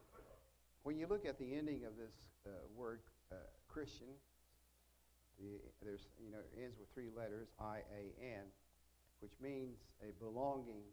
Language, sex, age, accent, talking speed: English, male, 60-79, American, 145 wpm